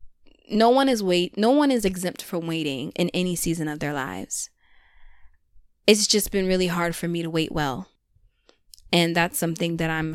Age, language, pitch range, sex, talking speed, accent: 20-39, English, 160-195 Hz, female, 185 wpm, American